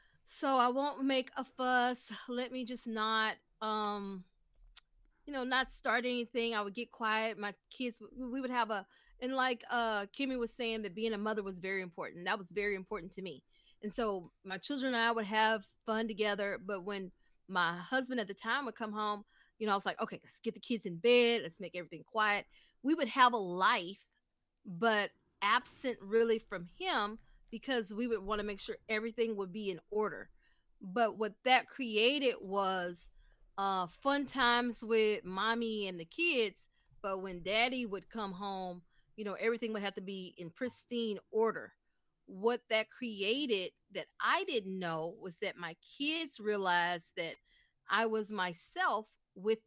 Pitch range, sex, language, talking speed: 195-240 Hz, female, English, 180 wpm